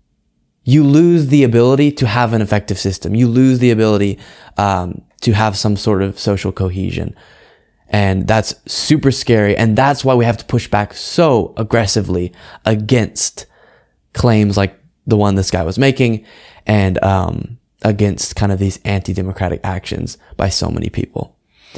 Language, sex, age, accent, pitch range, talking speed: English, male, 20-39, American, 100-130 Hz, 155 wpm